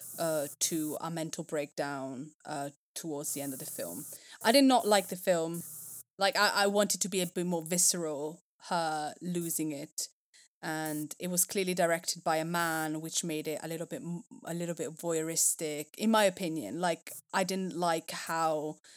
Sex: female